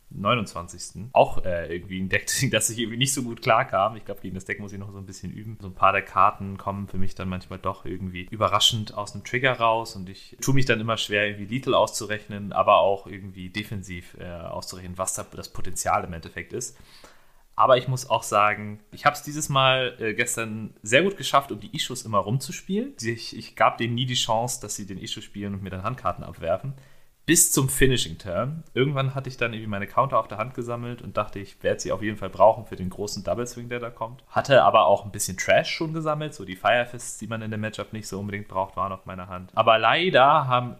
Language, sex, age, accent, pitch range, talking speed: German, male, 30-49, German, 100-125 Hz, 230 wpm